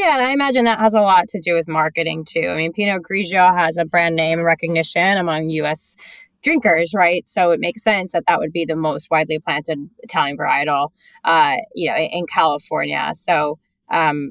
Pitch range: 160-210 Hz